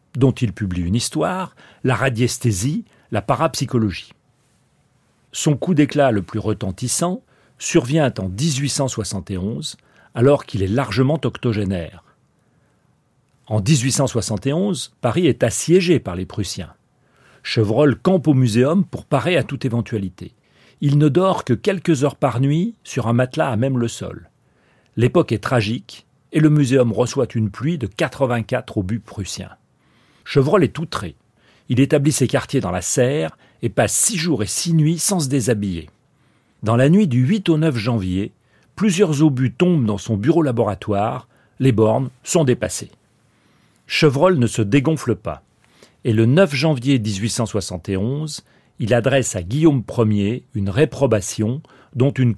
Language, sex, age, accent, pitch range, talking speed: French, male, 40-59, French, 110-145 Hz, 145 wpm